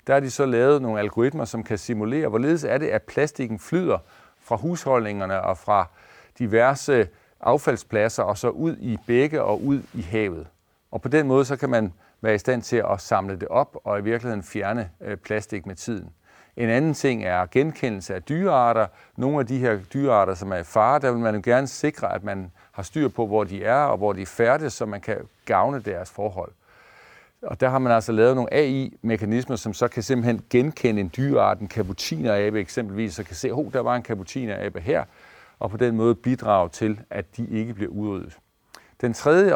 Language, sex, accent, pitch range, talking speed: Danish, male, native, 105-130 Hz, 205 wpm